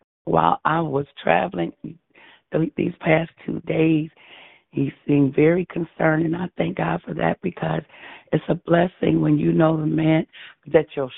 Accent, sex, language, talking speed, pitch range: American, female, English, 155 wpm, 140-165 Hz